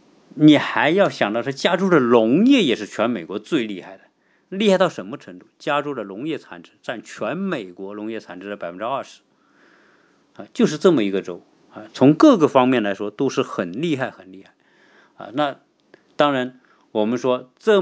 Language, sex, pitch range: Chinese, male, 100-145 Hz